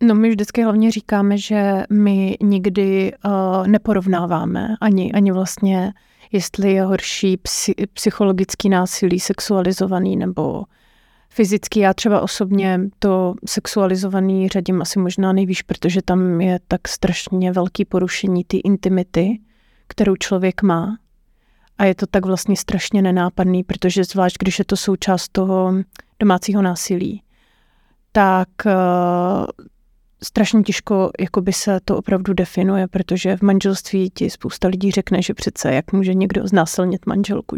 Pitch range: 185-205 Hz